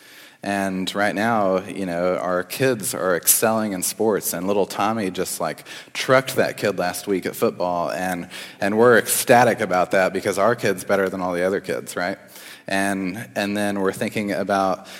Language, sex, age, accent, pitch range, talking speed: English, male, 30-49, American, 90-115 Hz, 180 wpm